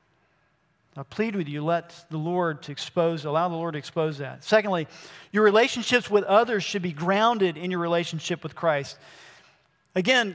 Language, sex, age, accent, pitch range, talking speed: English, male, 40-59, American, 165-215 Hz, 170 wpm